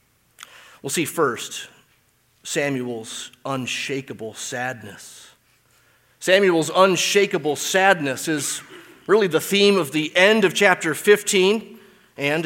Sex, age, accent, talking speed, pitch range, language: male, 30-49, American, 95 wpm, 135-205 Hz, English